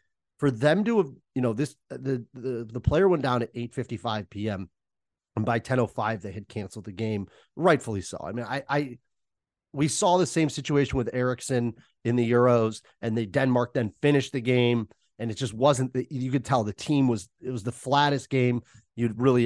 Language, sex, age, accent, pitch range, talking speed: English, male, 30-49, American, 115-140 Hz, 215 wpm